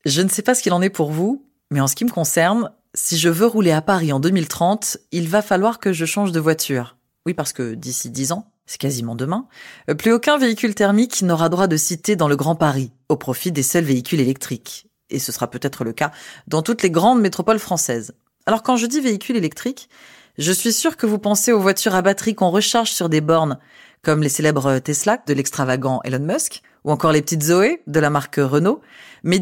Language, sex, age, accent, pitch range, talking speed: French, female, 20-39, French, 145-210 Hz, 225 wpm